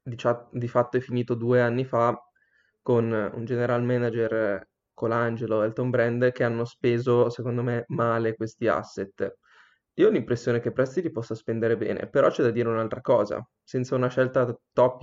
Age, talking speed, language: 20-39, 170 wpm, Italian